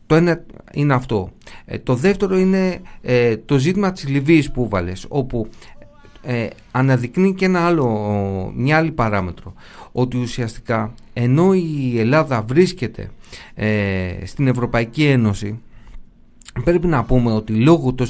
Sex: male